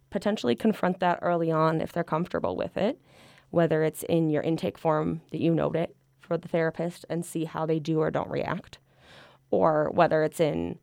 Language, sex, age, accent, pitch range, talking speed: English, female, 20-39, American, 155-180 Hz, 195 wpm